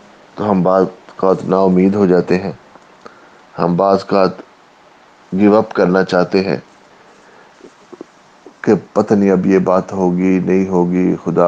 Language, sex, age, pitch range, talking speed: English, male, 30-49, 90-110 Hz, 140 wpm